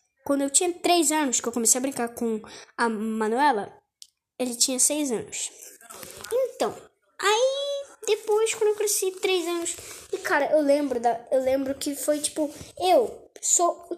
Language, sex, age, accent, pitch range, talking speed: Portuguese, female, 10-29, Brazilian, 265-380 Hz, 160 wpm